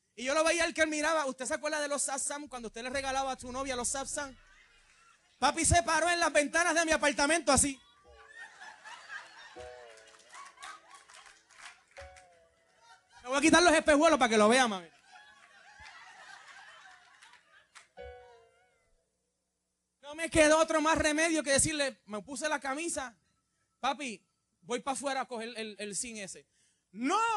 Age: 30-49